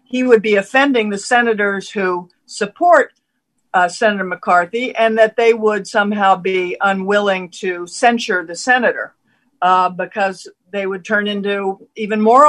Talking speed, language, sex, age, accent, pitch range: 145 wpm, English, female, 50-69, American, 180-225 Hz